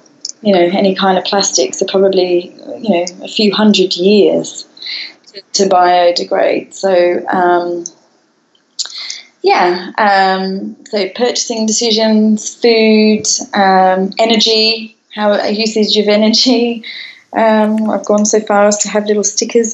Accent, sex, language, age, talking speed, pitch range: British, female, English, 20-39, 130 wpm, 195-235 Hz